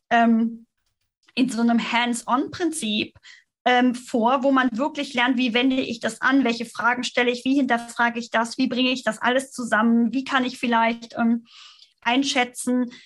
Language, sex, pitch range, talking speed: German, female, 230-270 Hz, 160 wpm